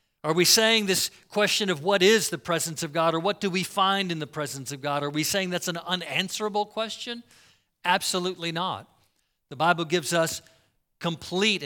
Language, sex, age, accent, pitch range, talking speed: English, male, 50-69, American, 150-185 Hz, 185 wpm